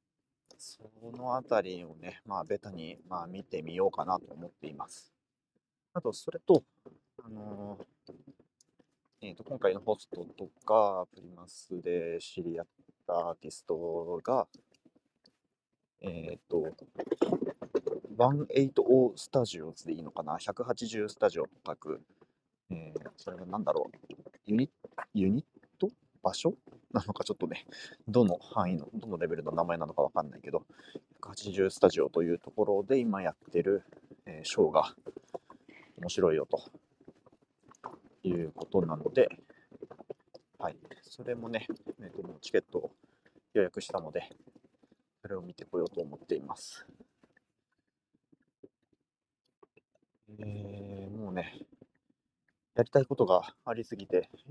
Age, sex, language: 30-49, male, Japanese